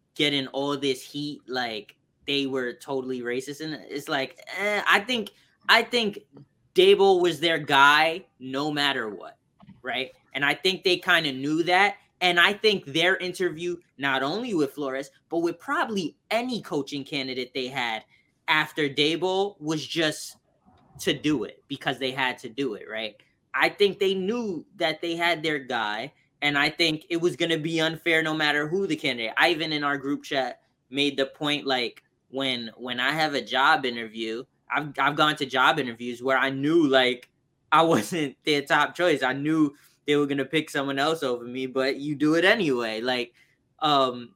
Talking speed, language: 185 wpm, English